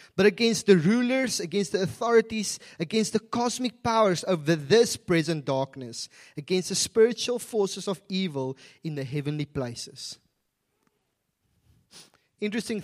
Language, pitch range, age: English, 145-210 Hz, 30-49